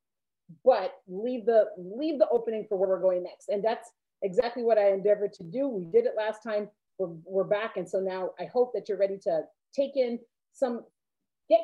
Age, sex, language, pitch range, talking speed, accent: 30-49, female, English, 195-270 Hz, 205 wpm, American